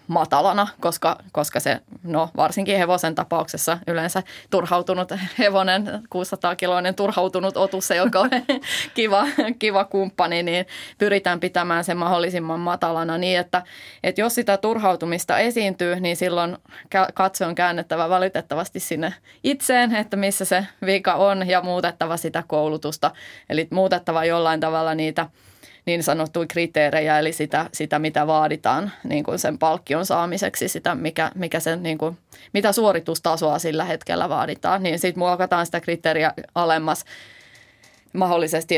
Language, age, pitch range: Finnish, 20-39, 160-190 Hz